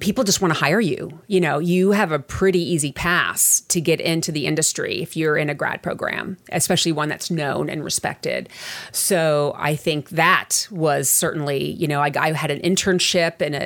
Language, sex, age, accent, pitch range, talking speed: English, female, 30-49, American, 150-185 Hz, 200 wpm